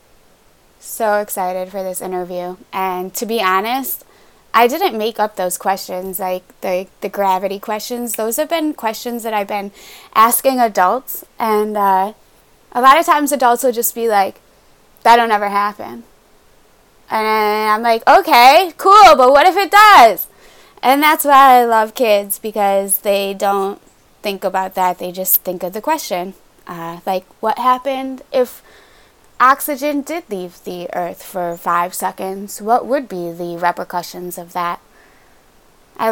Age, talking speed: 20-39, 155 wpm